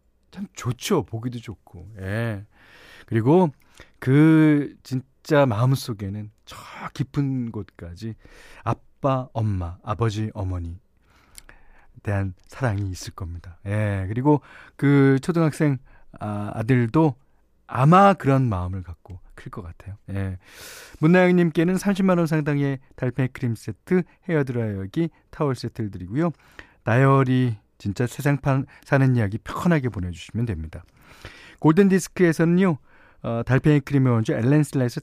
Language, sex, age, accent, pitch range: Korean, male, 40-59, native, 100-150 Hz